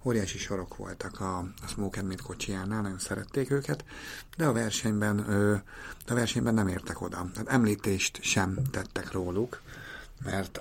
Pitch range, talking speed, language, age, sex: 95-115 Hz, 155 wpm, Hungarian, 50-69, male